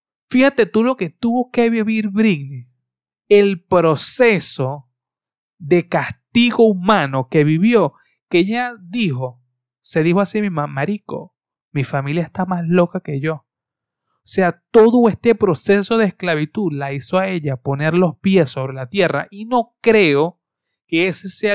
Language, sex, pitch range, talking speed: Spanish, male, 140-190 Hz, 150 wpm